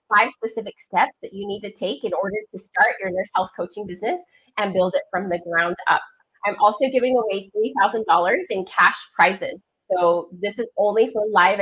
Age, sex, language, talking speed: 20-39, female, English, 195 wpm